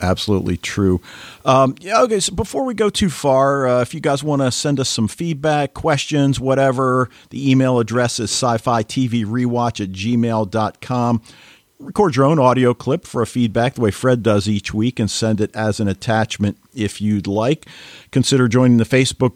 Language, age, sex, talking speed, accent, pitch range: English, 50-69, male, 185 wpm, American, 110-135 Hz